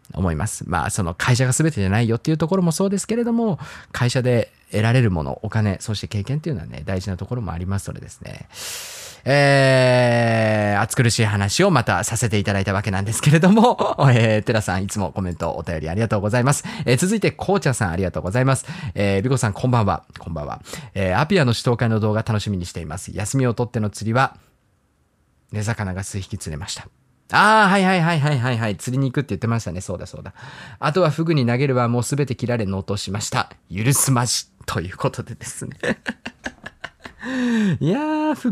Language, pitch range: Japanese, 100-140 Hz